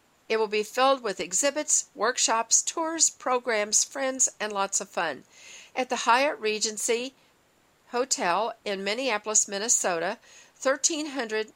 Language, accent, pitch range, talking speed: English, American, 205-270 Hz, 120 wpm